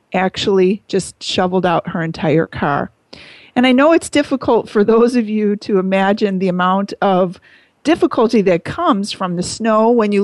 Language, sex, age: English, female, 40-59